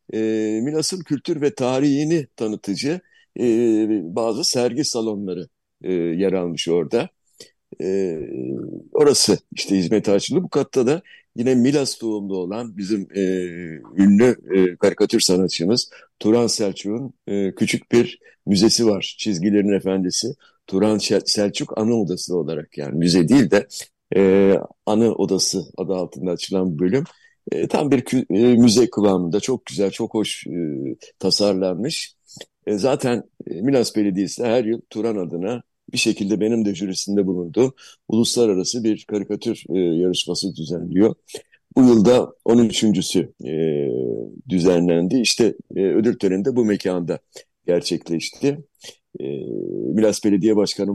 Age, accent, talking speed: 60-79, native, 125 wpm